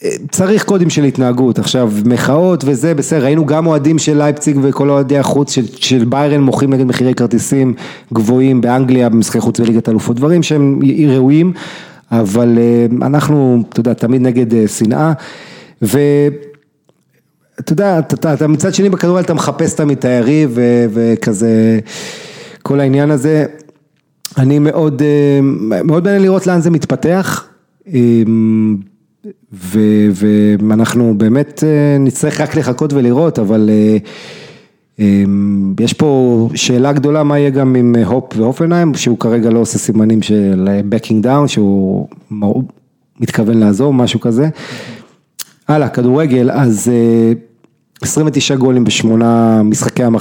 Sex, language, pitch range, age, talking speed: male, English, 115-150 Hz, 30-49, 115 wpm